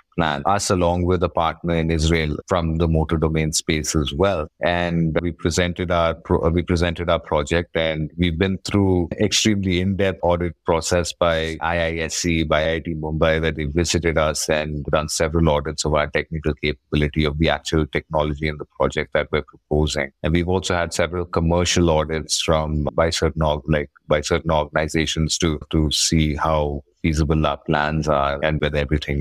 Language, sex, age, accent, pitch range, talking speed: English, male, 30-49, Indian, 75-85 Hz, 175 wpm